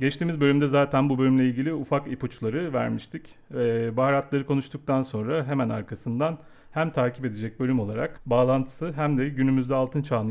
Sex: male